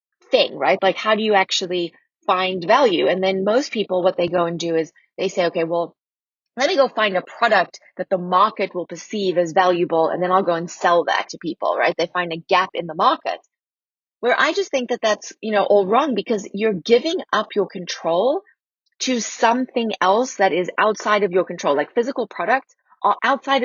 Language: English